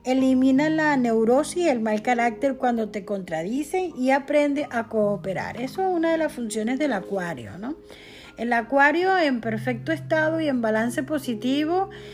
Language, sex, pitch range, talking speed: Spanish, female, 215-280 Hz, 160 wpm